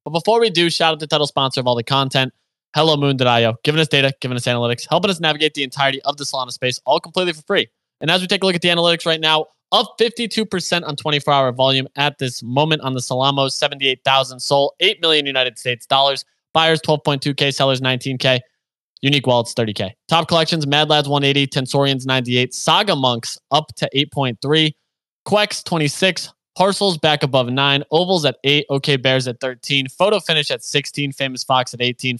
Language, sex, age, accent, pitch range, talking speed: English, male, 20-39, American, 130-160 Hz, 190 wpm